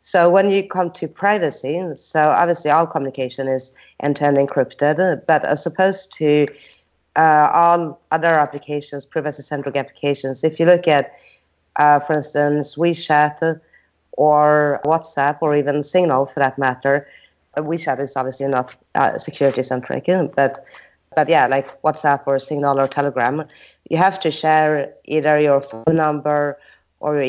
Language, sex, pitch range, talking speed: English, female, 135-155 Hz, 140 wpm